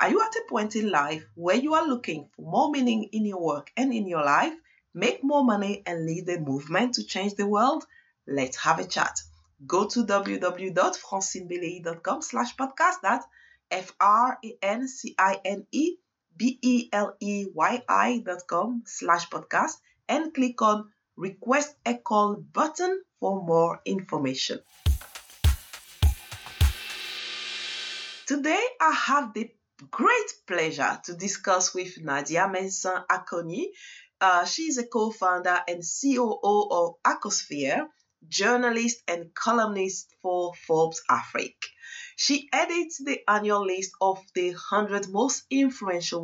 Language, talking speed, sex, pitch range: English, 120 wpm, female, 175-265 Hz